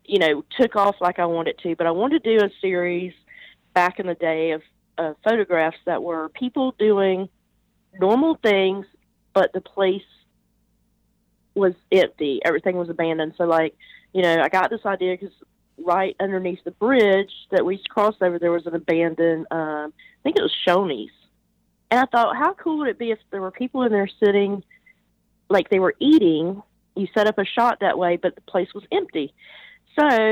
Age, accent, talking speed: 40-59, American, 190 wpm